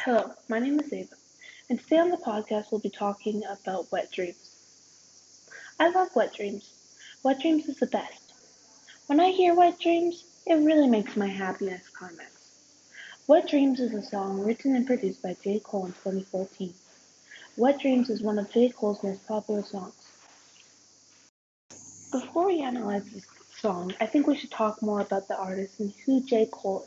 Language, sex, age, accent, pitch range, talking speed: English, female, 20-39, American, 200-265 Hz, 170 wpm